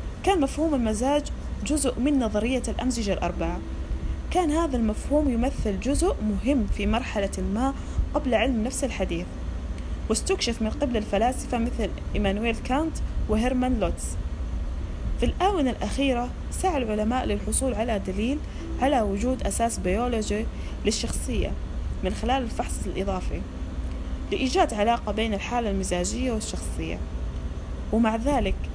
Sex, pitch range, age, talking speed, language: female, 190-255 Hz, 20-39, 115 wpm, Arabic